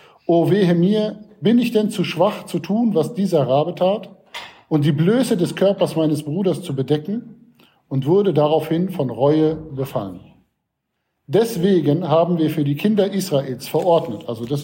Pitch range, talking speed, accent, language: 140-185 Hz, 160 wpm, German, German